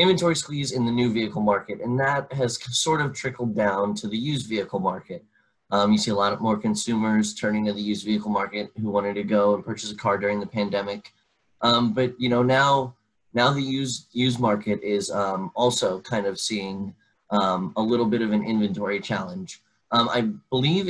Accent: American